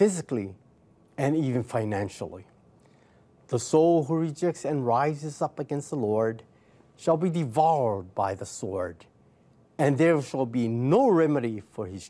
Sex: male